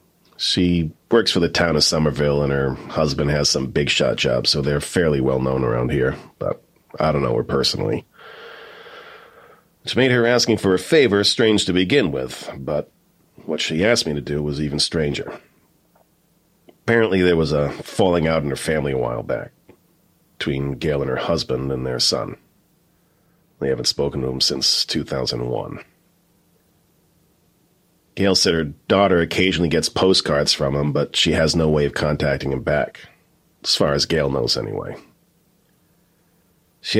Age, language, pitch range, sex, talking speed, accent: 40-59, English, 70-95 Hz, male, 160 wpm, American